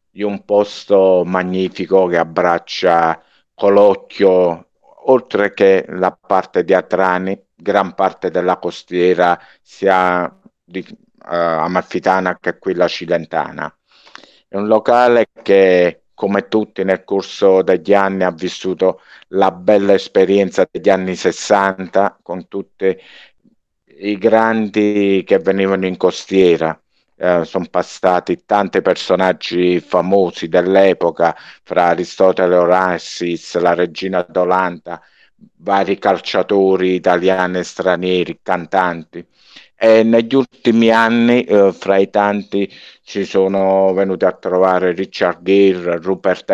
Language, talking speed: Italian, 110 wpm